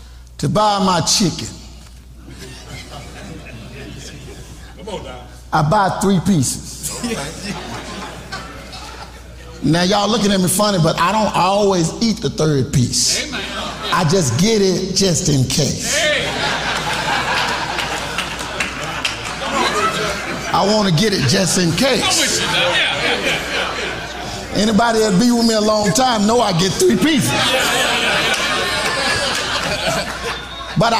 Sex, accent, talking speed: male, American, 95 wpm